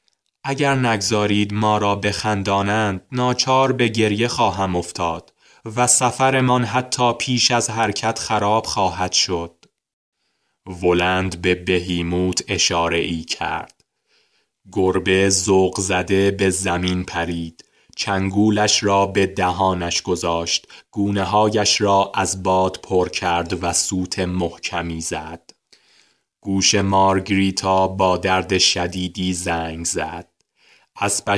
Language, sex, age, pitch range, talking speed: Persian, male, 20-39, 90-100 Hz, 105 wpm